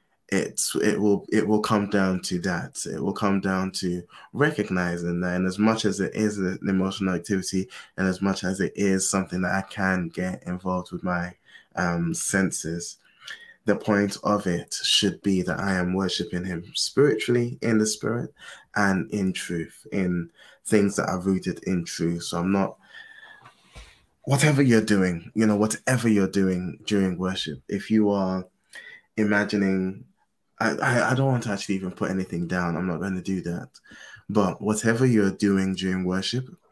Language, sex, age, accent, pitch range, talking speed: English, male, 20-39, British, 90-105 Hz, 170 wpm